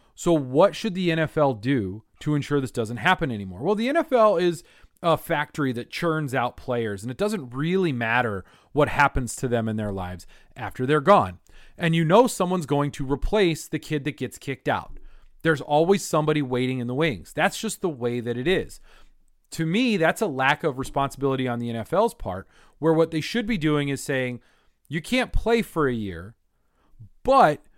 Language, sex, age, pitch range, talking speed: English, male, 30-49, 125-165 Hz, 195 wpm